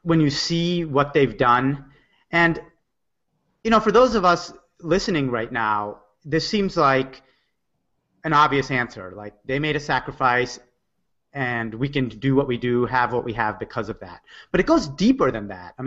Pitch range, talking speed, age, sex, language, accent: 120-150 Hz, 180 wpm, 30-49, male, English, American